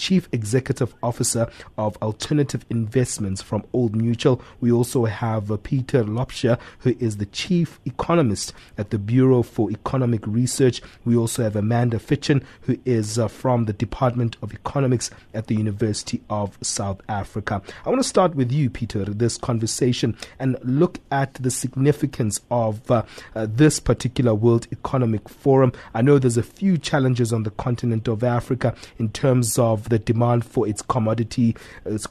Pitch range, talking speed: 110-130 Hz, 155 wpm